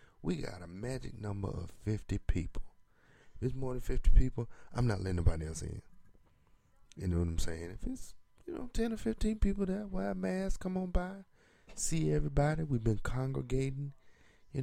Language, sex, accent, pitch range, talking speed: English, male, American, 90-130 Hz, 190 wpm